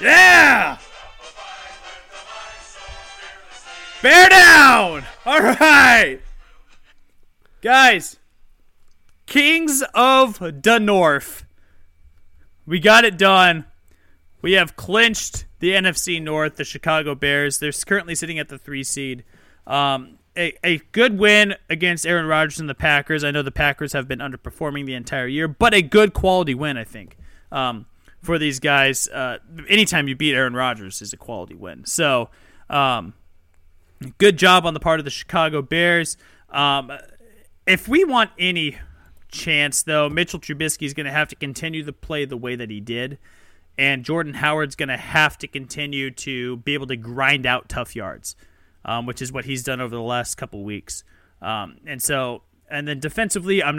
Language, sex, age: English, male, 30-49